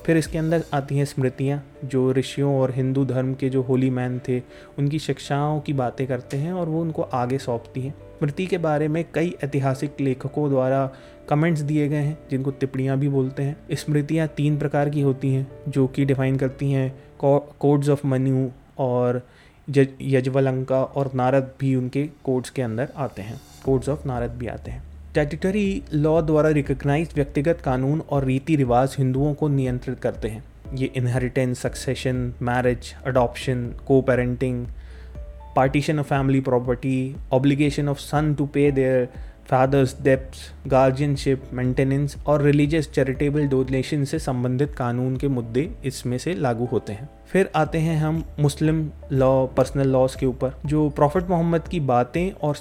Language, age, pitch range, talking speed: Hindi, 20-39, 130-150 Hz, 165 wpm